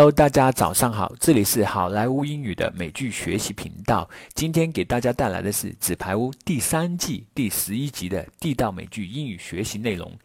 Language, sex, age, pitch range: Chinese, male, 50-69, 100-155 Hz